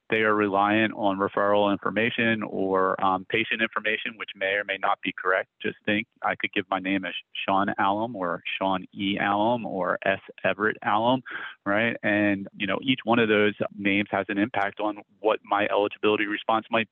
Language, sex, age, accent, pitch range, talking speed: English, male, 30-49, American, 100-110 Hz, 190 wpm